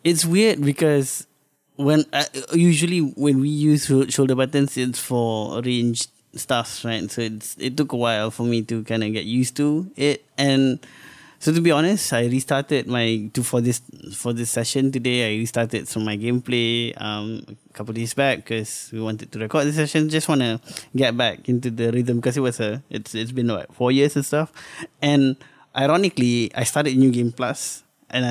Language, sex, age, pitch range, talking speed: English, male, 20-39, 115-145 Hz, 190 wpm